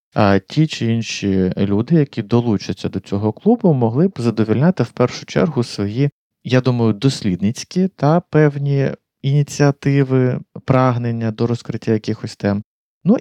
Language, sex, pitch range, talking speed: Ukrainian, male, 105-145 Hz, 130 wpm